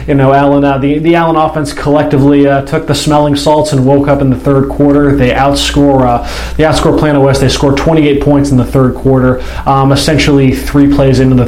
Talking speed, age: 215 wpm, 20-39